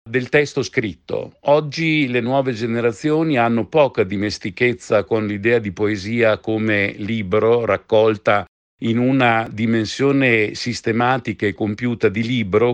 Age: 50-69